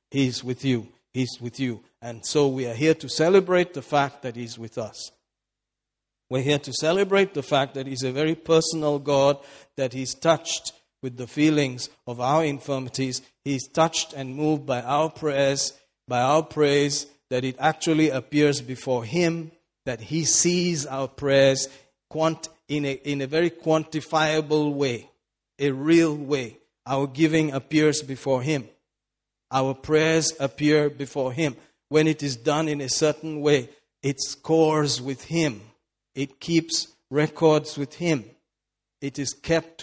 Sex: male